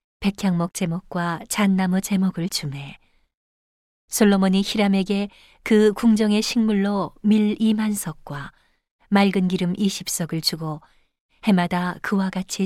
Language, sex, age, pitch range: Korean, female, 40-59, 175-210 Hz